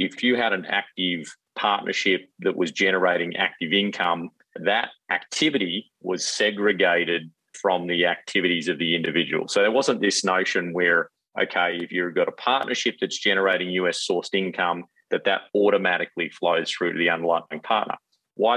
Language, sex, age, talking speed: English, male, 30-49, 150 wpm